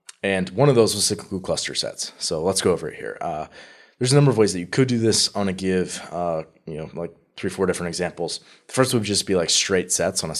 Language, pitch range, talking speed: English, 85-105 Hz, 265 wpm